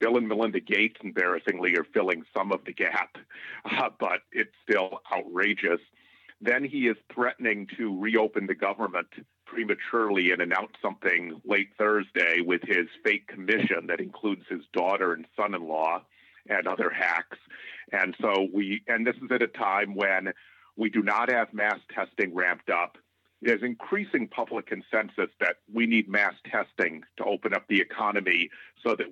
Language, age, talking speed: English, 50-69, 160 wpm